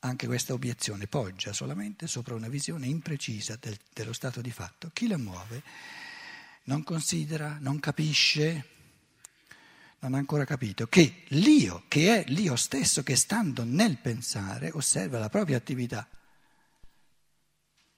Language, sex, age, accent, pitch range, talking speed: Italian, male, 60-79, native, 125-180 Hz, 125 wpm